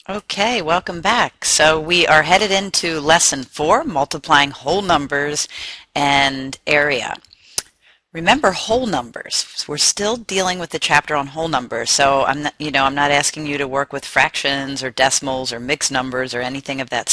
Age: 40-59